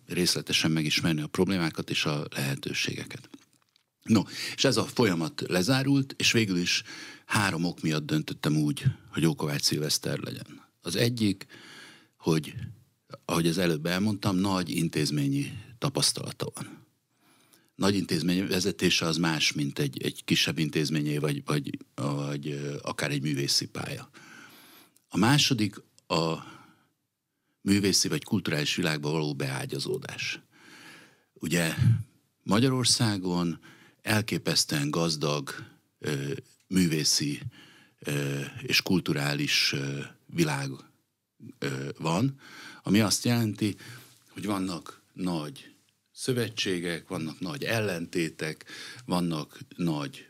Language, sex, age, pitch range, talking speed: Hungarian, male, 60-79, 80-120 Hz, 100 wpm